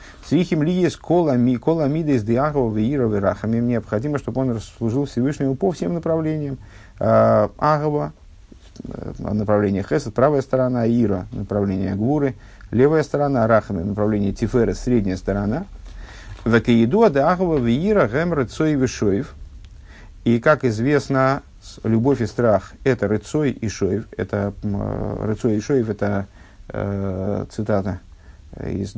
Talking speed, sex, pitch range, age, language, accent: 120 wpm, male, 100-125 Hz, 50-69, Russian, native